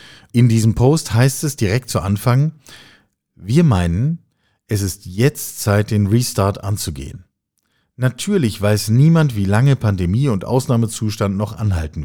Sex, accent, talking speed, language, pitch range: male, German, 135 wpm, German, 95-125 Hz